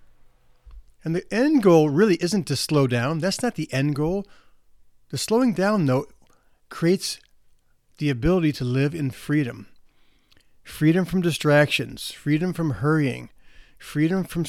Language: English